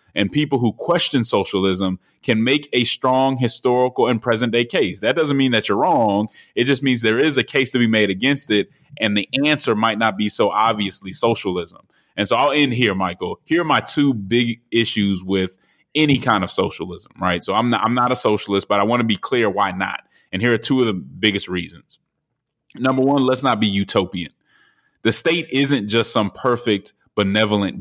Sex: male